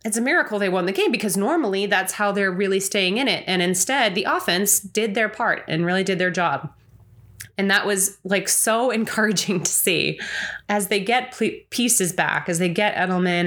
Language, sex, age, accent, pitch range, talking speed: English, female, 20-39, American, 175-220 Hz, 200 wpm